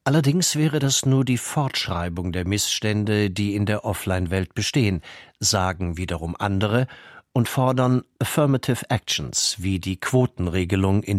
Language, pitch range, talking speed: German, 100-130 Hz, 130 wpm